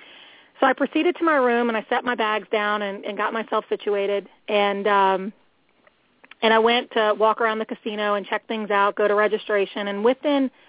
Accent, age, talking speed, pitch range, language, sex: American, 30-49, 200 wpm, 205-255 Hz, English, female